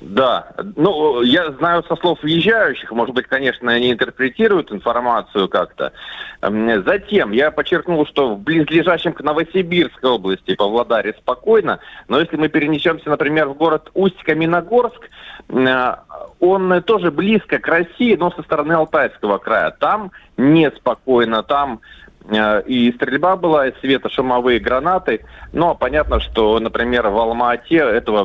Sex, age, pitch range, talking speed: male, 30-49, 115-165 Hz, 125 wpm